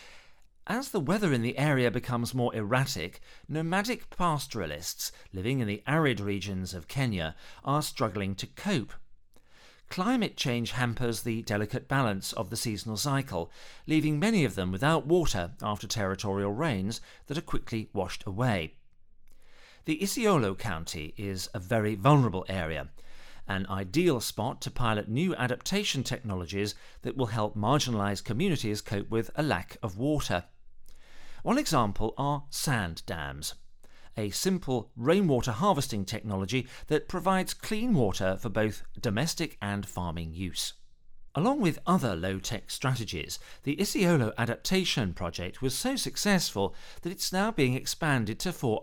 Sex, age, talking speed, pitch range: male, 50-69, 140 wpm, 100-150 Hz